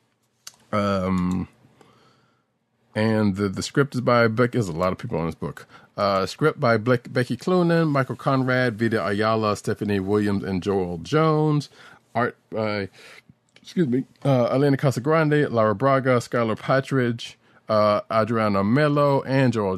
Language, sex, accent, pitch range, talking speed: English, male, American, 100-125 Hz, 145 wpm